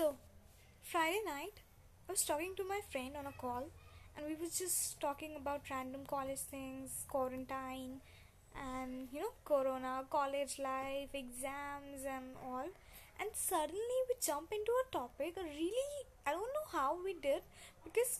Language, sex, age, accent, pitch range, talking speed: Hindi, female, 20-39, native, 270-390 Hz, 150 wpm